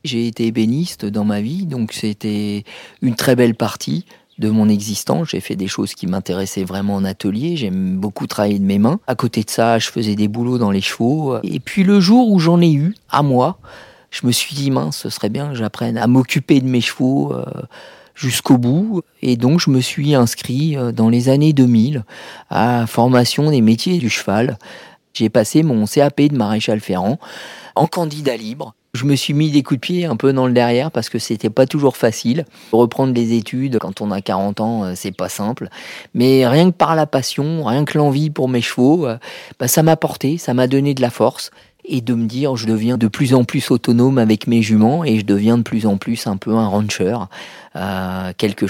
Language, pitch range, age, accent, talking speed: French, 110-140 Hz, 40-59, French, 215 wpm